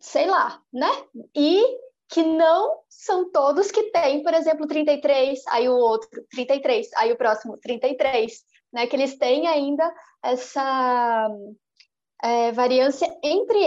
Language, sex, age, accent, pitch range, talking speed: English, female, 20-39, Brazilian, 255-315 Hz, 125 wpm